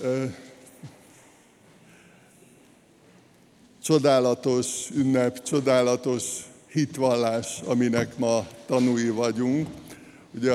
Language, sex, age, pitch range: Hungarian, male, 60-79, 120-130 Hz